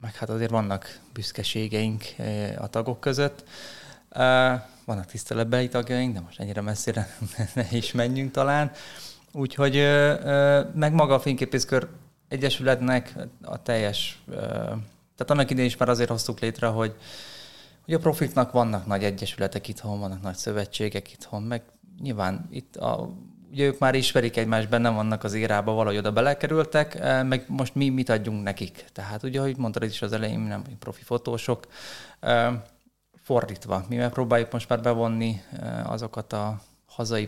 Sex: male